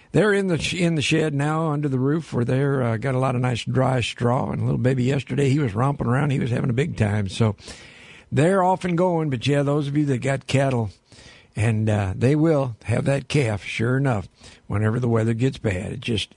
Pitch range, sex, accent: 120-145 Hz, male, American